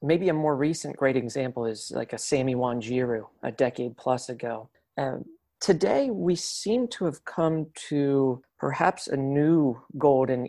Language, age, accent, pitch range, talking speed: English, 40-59, American, 125-160 Hz, 155 wpm